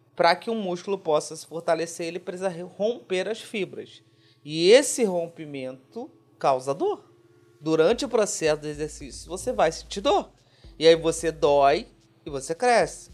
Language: Portuguese